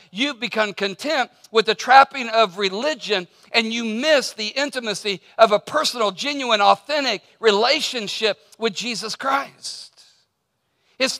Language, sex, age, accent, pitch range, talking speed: English, male, 50-69, American, 210-270 Hz, 125 wpm